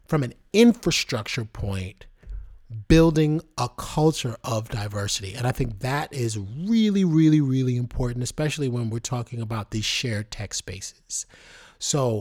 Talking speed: 140 wpm